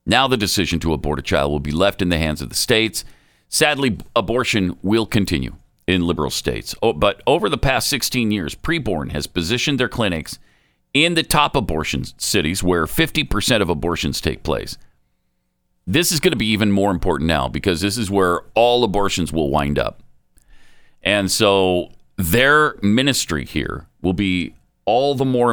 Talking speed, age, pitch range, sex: 170 wpm, 50-69, 85-125 Hz, male